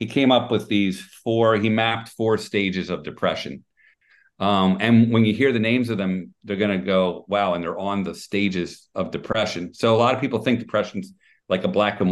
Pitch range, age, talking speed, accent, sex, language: 95-115 Hz, 50-69, 215 wpm, American, male, English